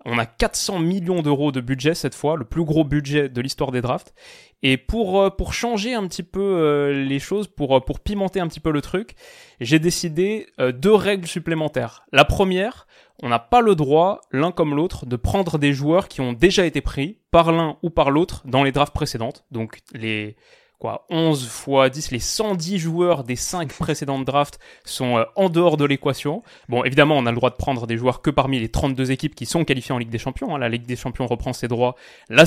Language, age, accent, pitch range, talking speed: French, 20-39, French, 135-185 Hz, 215 wpm